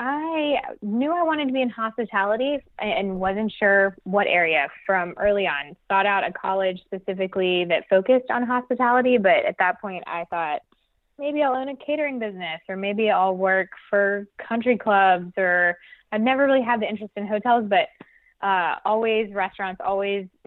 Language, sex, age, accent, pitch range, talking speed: English, female, 20-39, American, 180-220 Hz, 175 wpm